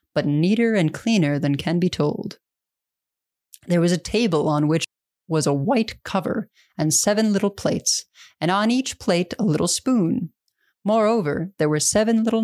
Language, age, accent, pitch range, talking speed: English, 20-39, American, 155-210 Hz, 165 wpm